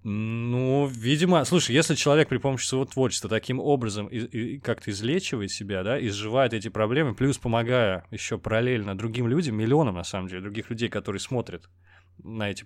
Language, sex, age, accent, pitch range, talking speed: Russian, male, 20-39, native, 105-140 Hz, 170 wpm